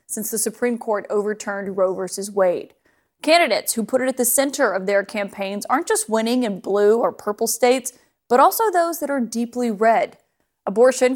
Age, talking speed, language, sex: 30-49, 185 wpm, English, female